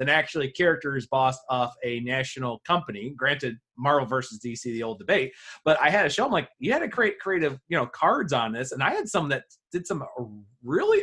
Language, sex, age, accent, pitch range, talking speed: English, male, 30-49, American, 130-205 Hz, 220 wpm